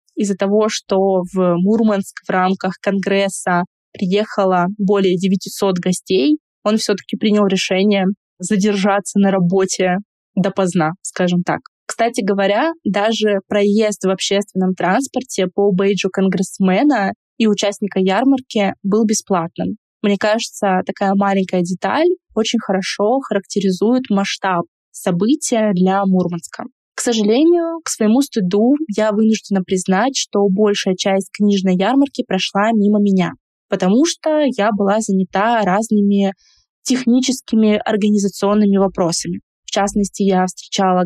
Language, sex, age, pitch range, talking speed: Russian, female, 20-39, 190-220 Hz, 115 wpm